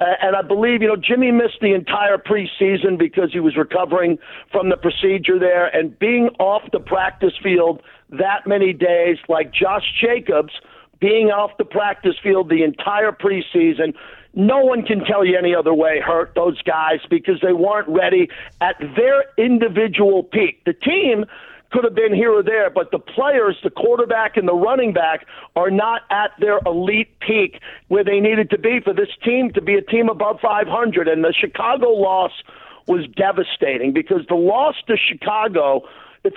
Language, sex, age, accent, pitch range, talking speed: English, male, 50-69, American, 185-230 Hz, 175 wpm